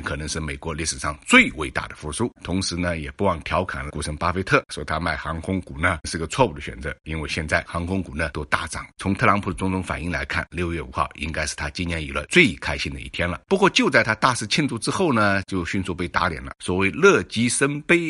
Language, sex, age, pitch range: Chinese, male, 50-69, 80-110 Hz